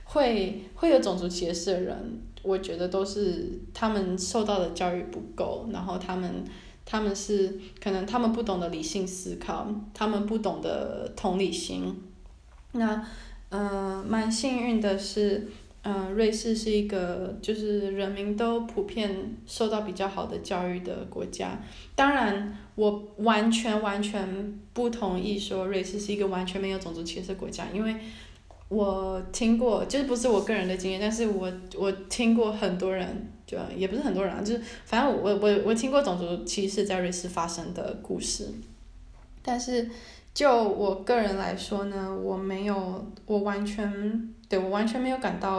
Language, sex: English, female